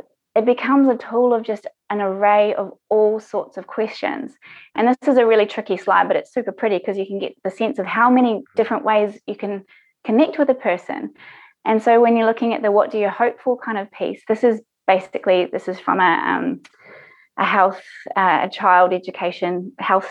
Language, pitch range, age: English, 205-255 Hz, 20-39